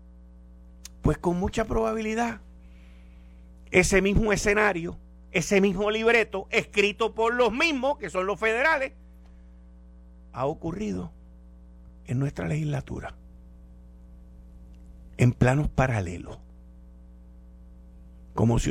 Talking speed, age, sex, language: 90 wpm, 50-69, male, Spanish